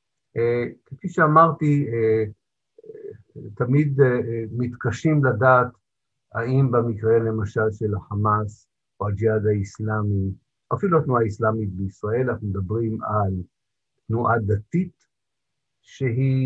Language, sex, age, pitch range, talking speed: Hebrew, male, 50-69, 105-135 Hz, 85 wpm